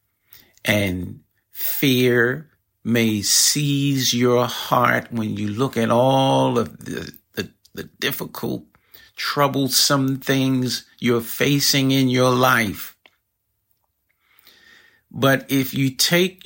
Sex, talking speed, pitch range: male, 95 wpm, 100-140 Hz